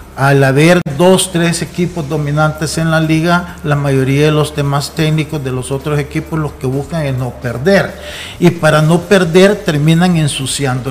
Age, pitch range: 50-69, 140-170 Hz